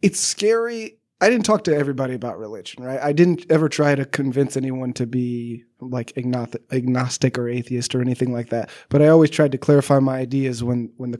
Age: 20-39